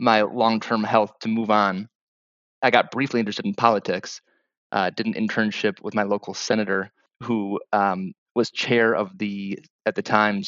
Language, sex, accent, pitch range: English, male, American, 95-110 Hz